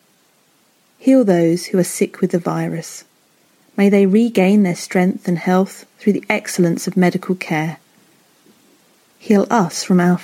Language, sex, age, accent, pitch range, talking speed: English, female, 40-59, British, 170-210 Hz, 145 wpm